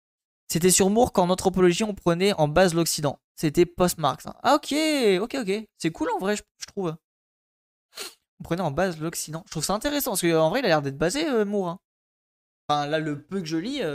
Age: 20-39